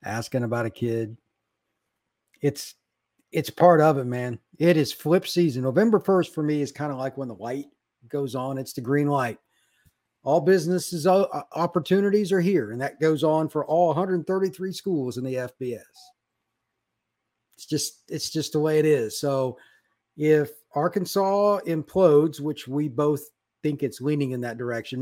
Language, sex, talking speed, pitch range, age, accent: English, male, 165 wpm, 135-195 Hz, 50-69, American